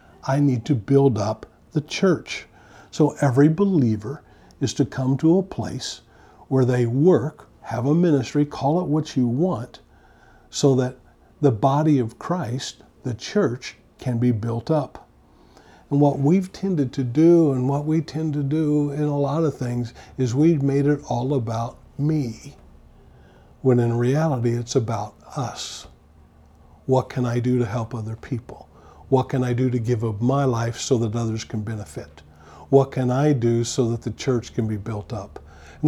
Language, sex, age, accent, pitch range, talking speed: English, male, 50-69, American, 115-145 Hz, 175 wpm